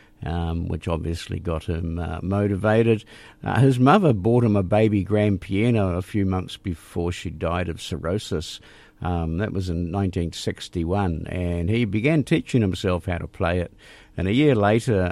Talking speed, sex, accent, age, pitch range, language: 165 wpm, male, Australian, 50-69, 90-110 Hz, English